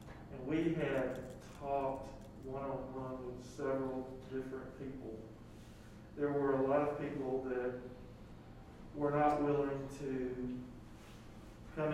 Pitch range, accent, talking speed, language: 125-140 Hz, American, 115 wpm, English